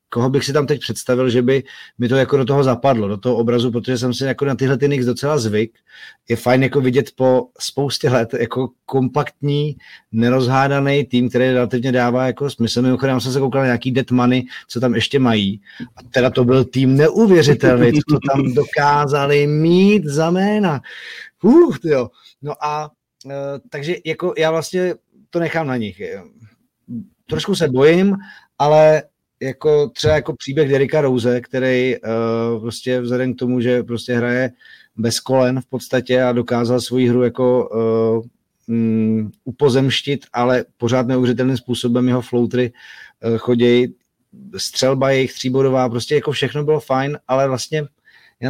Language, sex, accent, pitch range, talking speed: Czech, male, native, 125-145 Hz, 155 wpm